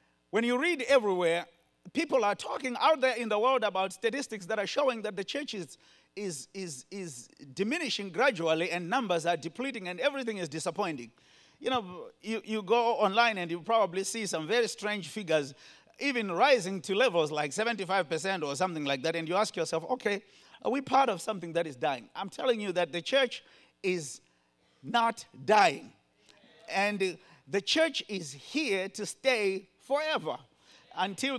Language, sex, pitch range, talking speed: English, male, 180-245 Hz, 170 wpm